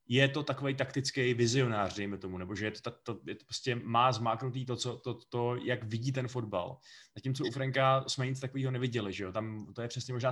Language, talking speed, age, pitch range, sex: Czech, 225 wpm, 20-39, 110-135 Hz, male